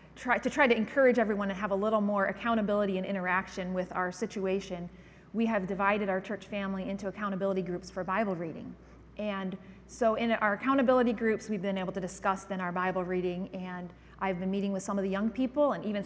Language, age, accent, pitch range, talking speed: English, 30-49, American, 190-230 Hz, 205 wpm